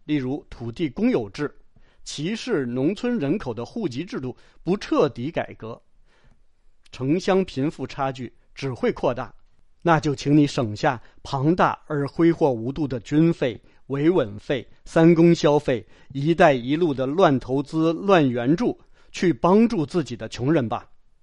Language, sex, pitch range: English, male, 125-165 Hz